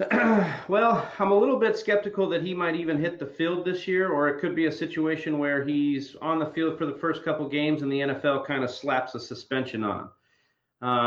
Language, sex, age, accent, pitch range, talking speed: English, male, 40-59, American, 130-170 Hz, 220 wpm